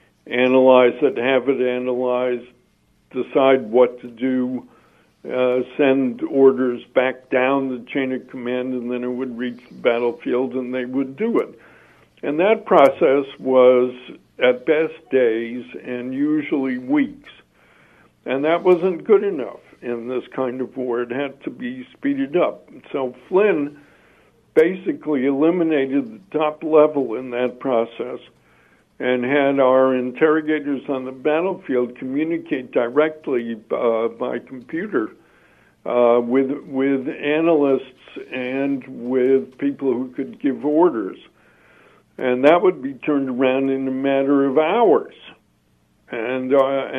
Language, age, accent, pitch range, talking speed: English, 60-79, American, 125-150 Hz, 130 wpm